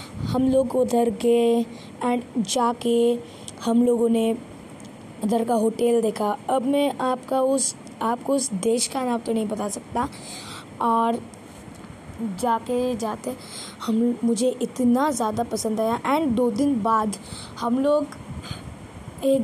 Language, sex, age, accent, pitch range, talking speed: Hindi, female, 20-39, native, 230-255 Hz, 135 wpm